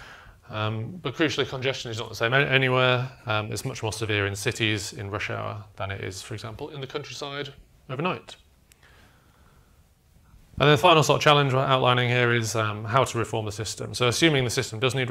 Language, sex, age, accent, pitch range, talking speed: English, male, 30-49, British, 105-125 Hz, 200 wpm